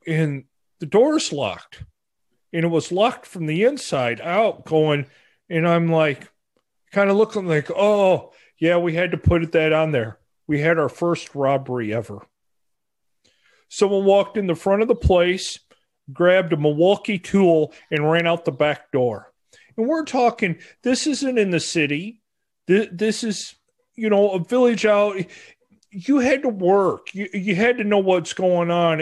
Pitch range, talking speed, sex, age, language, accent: 145-195 Hz, 165 wpm, male, 40-59, English, American